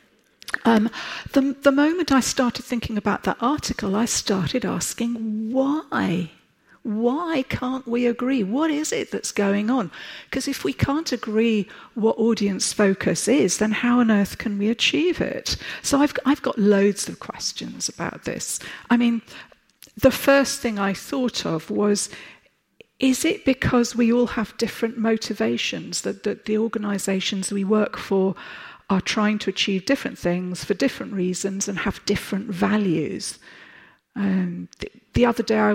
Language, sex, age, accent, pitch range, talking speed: Swedish, female, 50-69, British, 195-260 Hz, 155 wpm